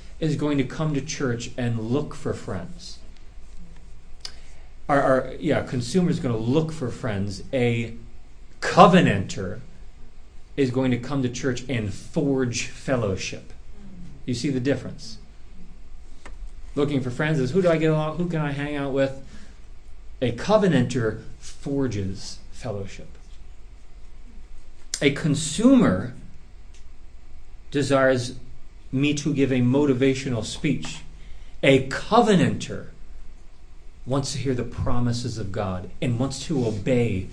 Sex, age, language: male, 40-59, English